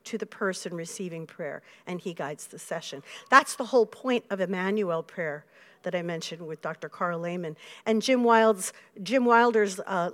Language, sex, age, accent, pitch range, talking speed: English, female, 50-69, American, 200-325 Hz, 180 wpm